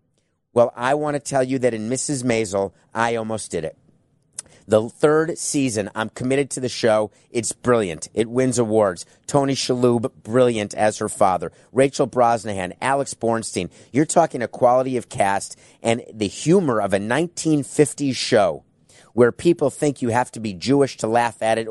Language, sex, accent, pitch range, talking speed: English, male, American, 110-135 Hz, 170 wpm